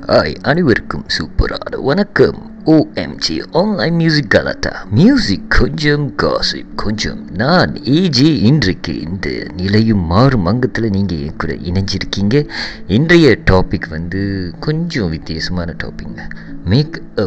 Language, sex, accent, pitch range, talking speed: English, male, Indian, 85-115 Hz, 110 wpm